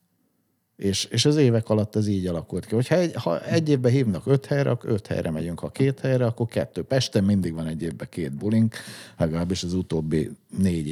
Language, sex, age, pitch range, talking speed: Hungarian, male, 50-69, 85-115 Hz, 200 wpm